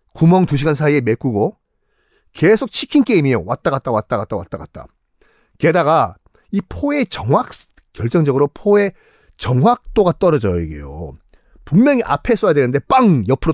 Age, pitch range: 40-59, 130-220 Hz